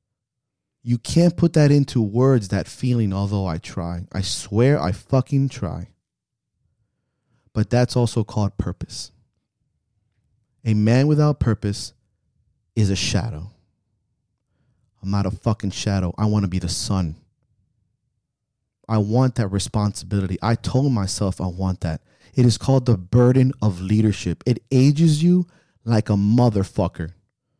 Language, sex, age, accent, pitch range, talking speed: English, male, 30-49, American, 100-130 Hz, 135 wpm